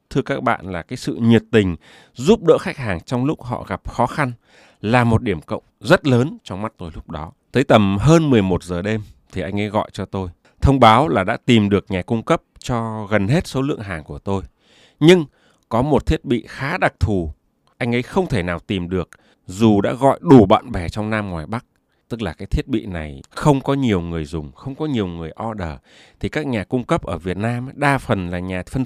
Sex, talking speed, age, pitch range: male, 235 wpm, 20-39, 95-135 Hz